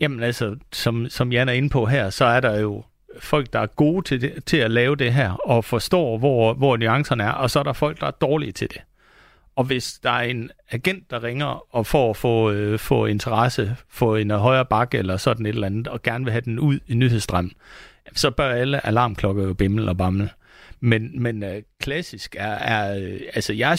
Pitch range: 110-150 Hz